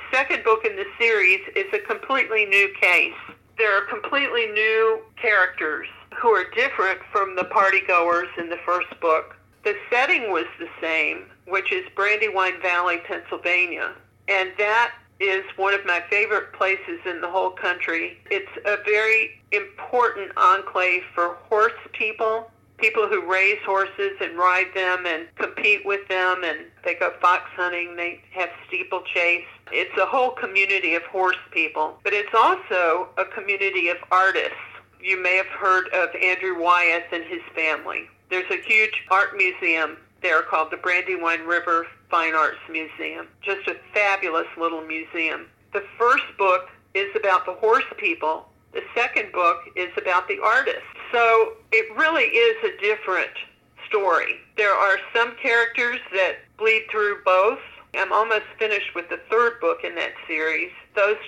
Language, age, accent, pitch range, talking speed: English, 50-69, American, 180-245 Hz, 155 wpm